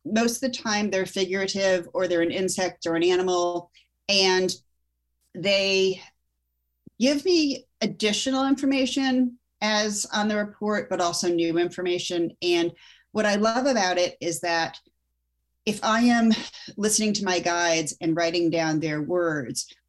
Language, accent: English, American